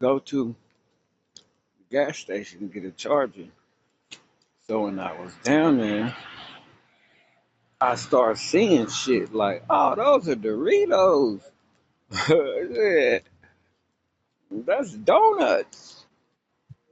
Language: English